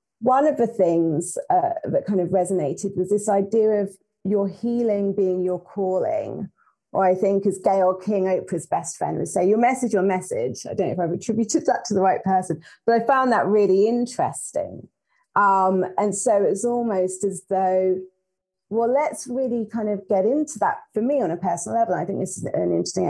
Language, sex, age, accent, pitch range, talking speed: English, female, 30-49, British, 180-215 Hz, 205 wpm